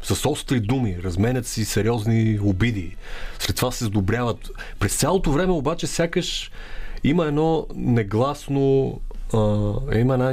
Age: 30-49